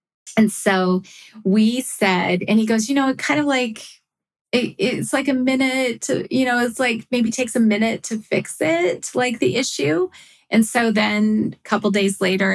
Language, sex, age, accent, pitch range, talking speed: English, female, 30-49, American, 185-220 Hz, 200 wpm